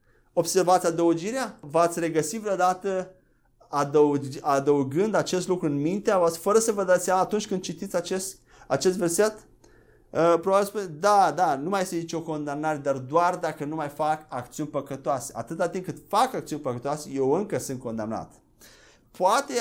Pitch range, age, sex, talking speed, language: 150-195 Hz, 30-49, male, 160 wpm, Romanian